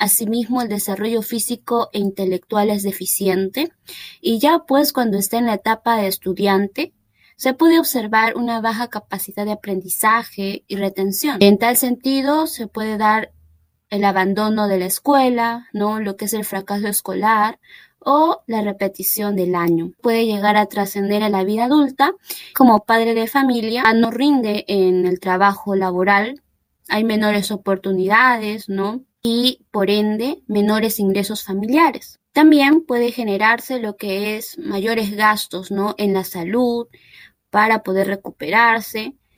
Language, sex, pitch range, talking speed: Spanish, female, 200-245 Hz, 145 wpm